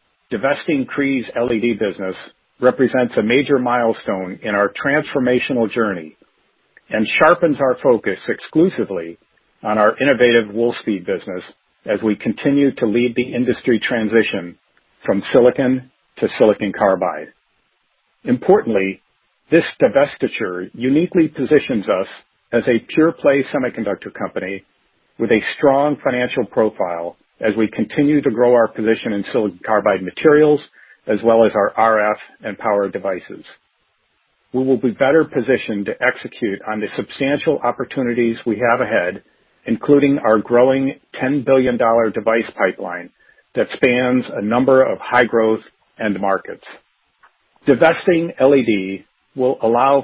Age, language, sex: 50-69, English, male